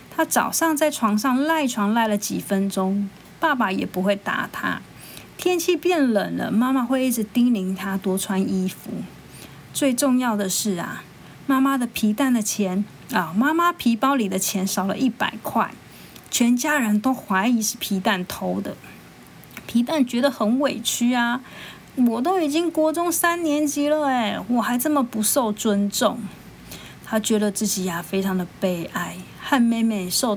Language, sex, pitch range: Chinese, female, 200-265 Hz